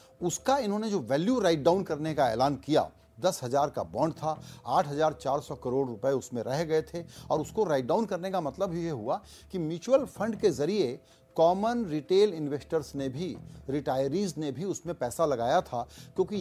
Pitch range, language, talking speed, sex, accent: 145-205 Hz, Hindi, 180 wpm, male, native